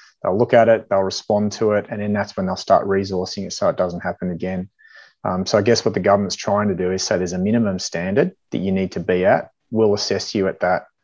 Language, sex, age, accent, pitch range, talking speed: English, male, 30-49, Australian, 95-115 Hz, 260 wpm